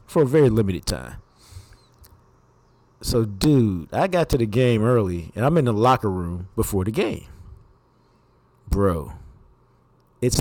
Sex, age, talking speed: male, 40-59, 140 wpm